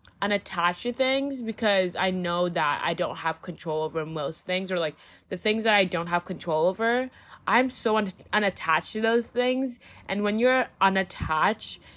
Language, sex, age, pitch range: English, female, 20-39, 175-220 Hz